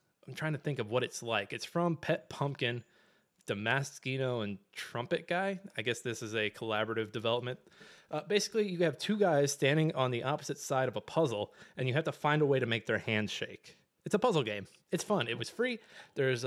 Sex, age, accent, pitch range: male, 20-39, American, 115-155 Hz